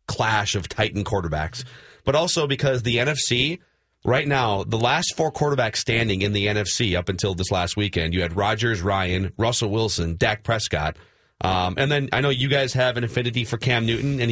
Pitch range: 110-150 Hz